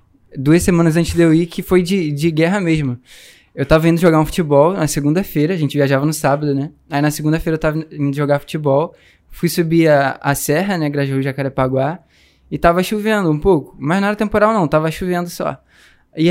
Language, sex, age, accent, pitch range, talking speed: Portuguese, male, 10-29, Brazilian, 140-175 Hz, 205 wpm